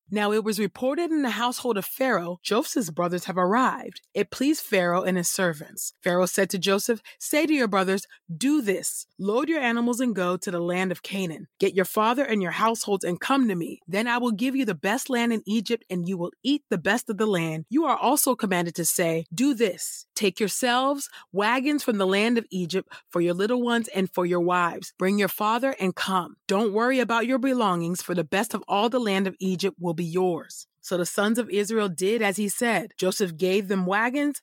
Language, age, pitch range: English, 30-49, 180-230 Hz